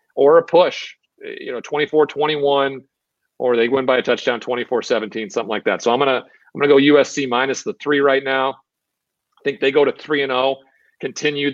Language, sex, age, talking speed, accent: English, male, 40-59, 185 wpm, American